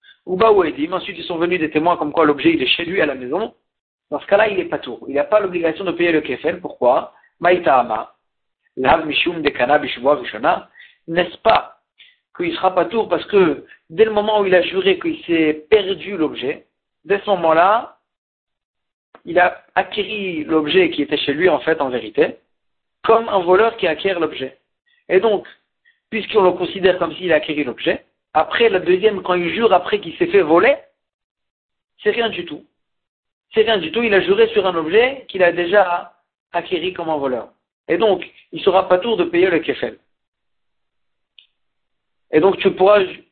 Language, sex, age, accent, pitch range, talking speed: French, male, 60-79, French, 165-225 Hz, 185 wpm